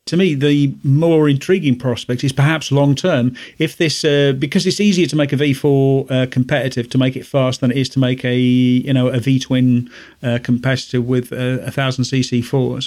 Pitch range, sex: 130-145 Hz, male